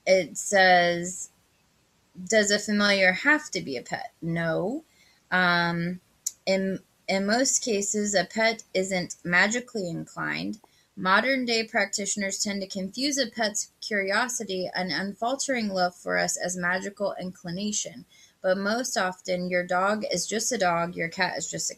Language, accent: English, American